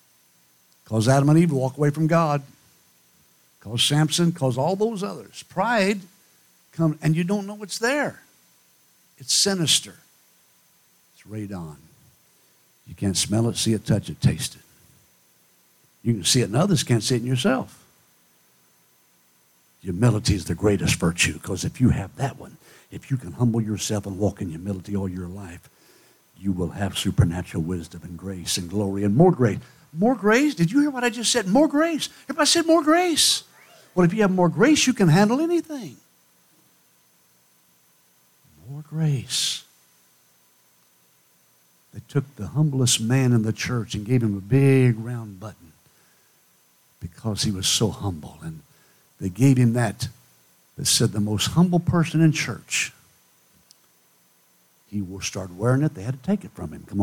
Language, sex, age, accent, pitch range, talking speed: English, male, 60-79, American, 95-160 Hz, 165 wpm